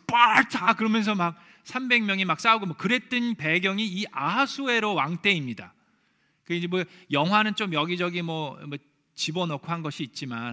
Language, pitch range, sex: Korean, 155-215 Hz, male